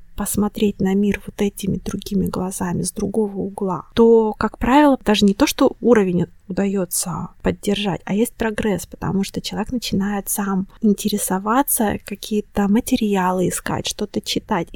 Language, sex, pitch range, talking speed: Russian, female, 180-215 Hz, 140 wpm